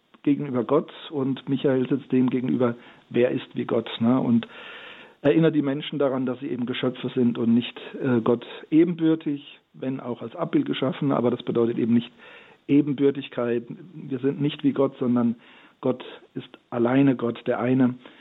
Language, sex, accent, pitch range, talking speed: German, male, German, 120-145 Hz, 160 wpm